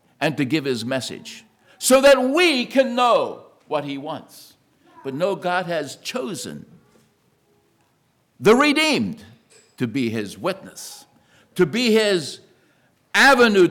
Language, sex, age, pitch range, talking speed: English, male, 60-79, 160-250 Hz, 125 wpm